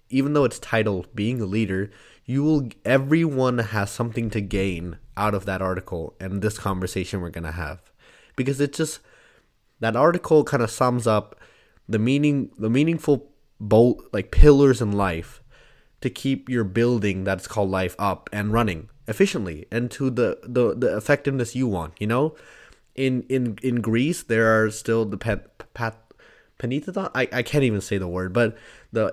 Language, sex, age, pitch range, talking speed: English, male, 20-39, 100-130 Hz, 170 wpm